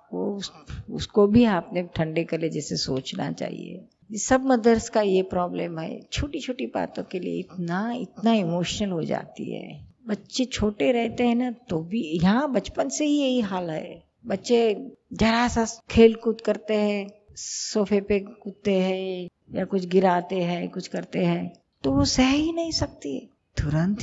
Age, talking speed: 50-69, 155 wpm